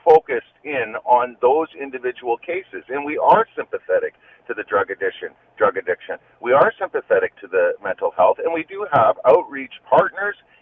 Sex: male